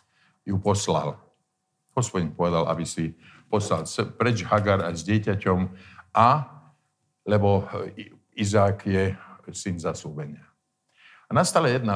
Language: Slovak